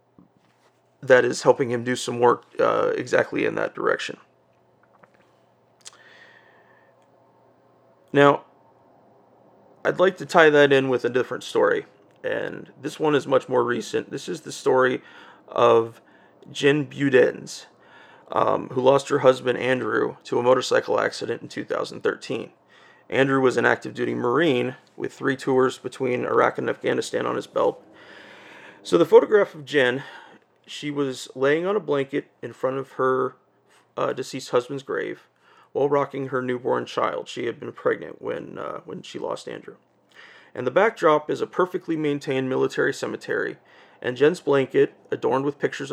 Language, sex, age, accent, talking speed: English, male, 30-49, American, 150 wpm